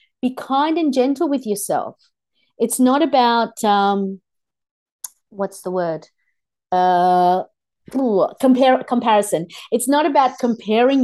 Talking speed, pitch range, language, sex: 115 wpm, 190-255 Hz, English, female